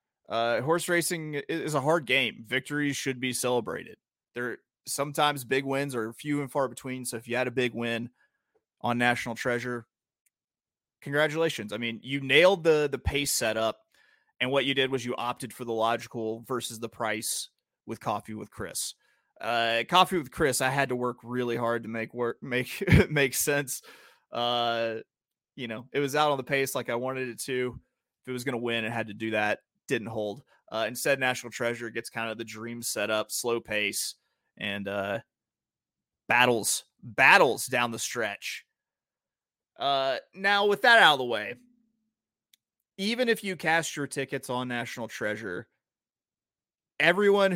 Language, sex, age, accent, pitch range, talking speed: English, male, 30-49, American, 115-140 Hz, 175 wpm